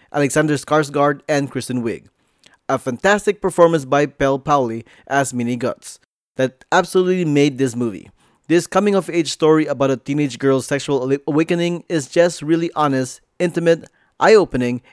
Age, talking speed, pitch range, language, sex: 20-39, 135 wpm, 130-160 Hz, English, male